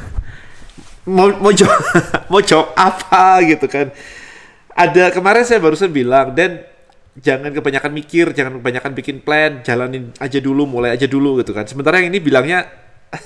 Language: Indonesian